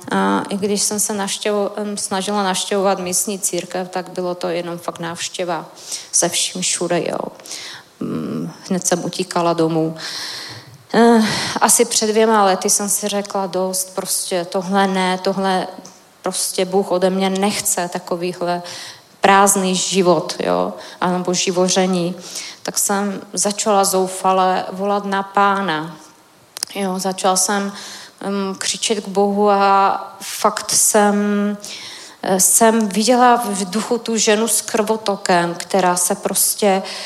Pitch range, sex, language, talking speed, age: 180-205 Hz, female, Czech, 120 wpm, 20-39